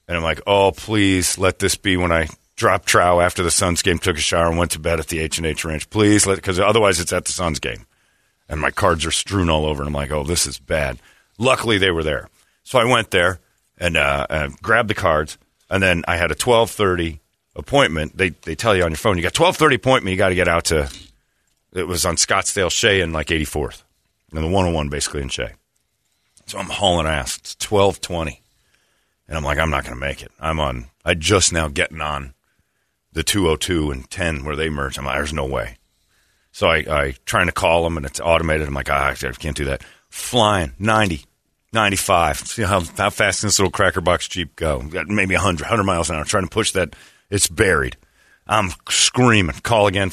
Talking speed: 220 wpm